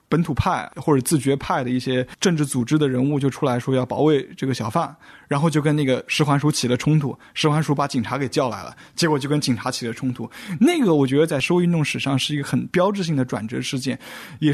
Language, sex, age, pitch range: Chinese, male, 20-39, 130-175 Hz